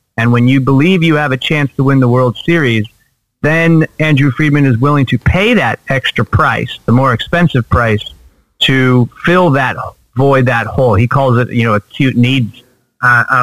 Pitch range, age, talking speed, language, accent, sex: 115-135 Hz, 40-59, 185 wpm, English, American, male